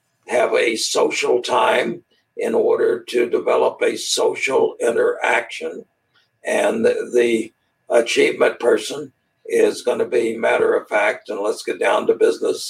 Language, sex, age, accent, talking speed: English, male, 60-79, American, 130 wpm